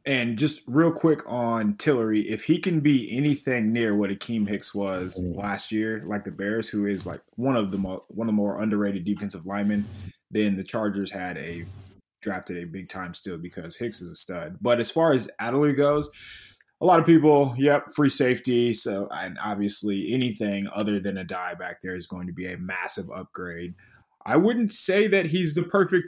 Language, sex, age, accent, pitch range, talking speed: English, male, 20-39, American, 100-140 Hz, 200 wpm